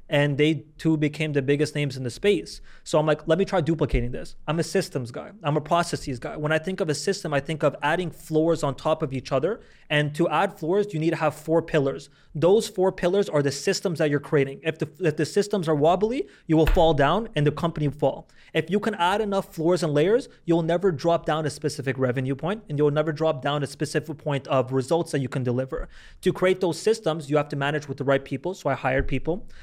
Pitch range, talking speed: 140-160 Hz, 245 wpm